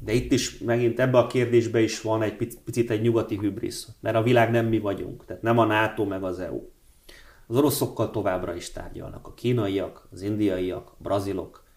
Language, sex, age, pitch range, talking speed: Hungarian, male, 30-49, 105-120 Hz, 195 wpm